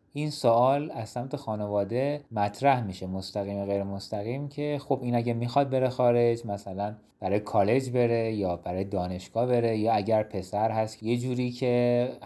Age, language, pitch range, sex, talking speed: 30-49, Persian, 100-130 Hz, male, 155 wpm